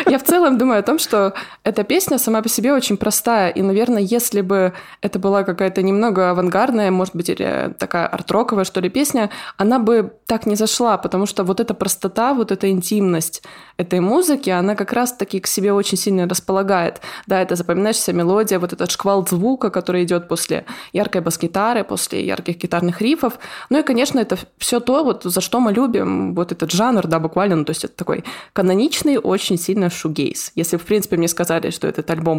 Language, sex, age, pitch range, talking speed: Russian, female, 20-39, 175-225 Hz, 195 wpm